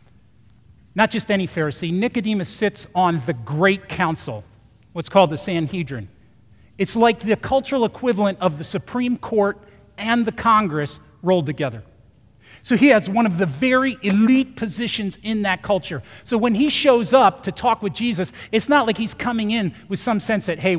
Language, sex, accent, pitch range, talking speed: English, male, American, 140-225 Hz, 175 wpm